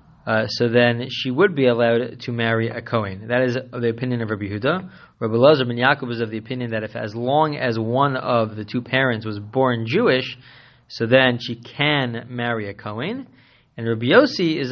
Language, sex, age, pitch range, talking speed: English, male, 20-39, 115-130 Hz, 205 wpm